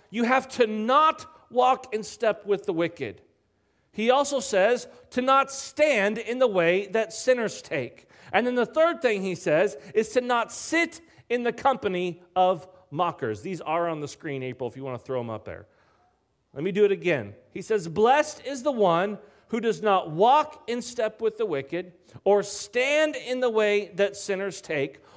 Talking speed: 190 wpm